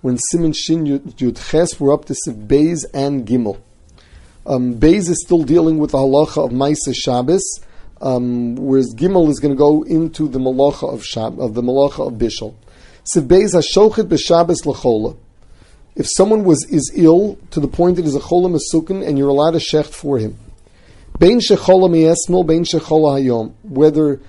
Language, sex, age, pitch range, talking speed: English, male, 40-59, 130-165 Hz, 160 wpm